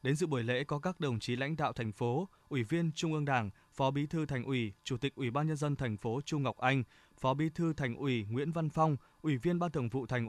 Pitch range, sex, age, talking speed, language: 120-150 Hz, male, 20-39, 275 wpm, Vietnamese